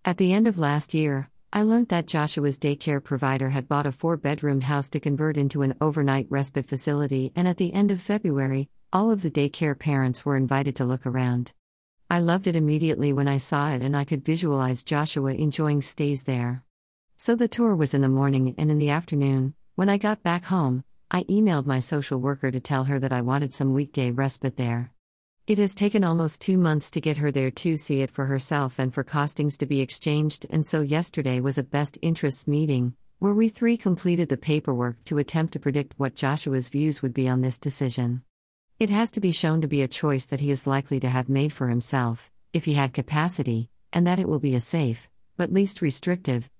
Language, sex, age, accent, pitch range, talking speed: English, female, 50-69, American, 135-160 Hz, 215 wpm